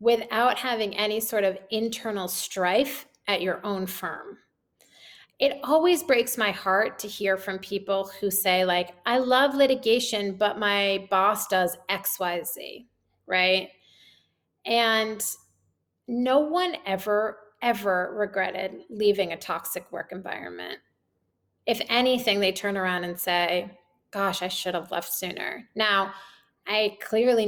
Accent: American